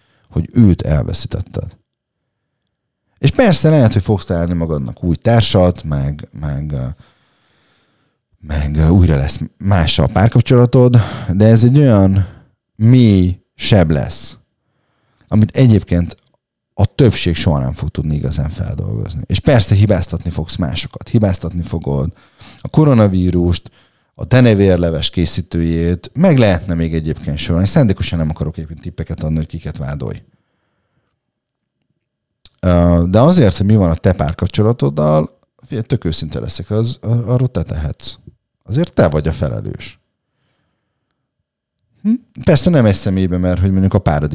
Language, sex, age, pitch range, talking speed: Hungarian, male, 30-49, 85-120 Hz, 125 wpm